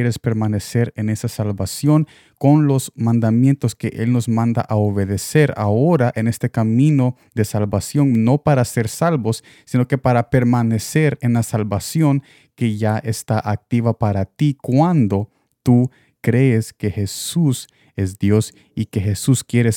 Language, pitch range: Spanish, 110-130 Hz